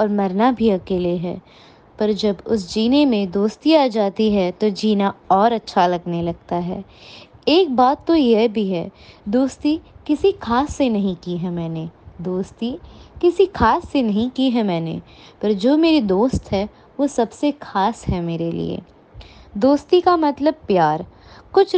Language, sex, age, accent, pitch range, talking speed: Hindi, female, 20-39, native, 190-295 Hz, 165 wpm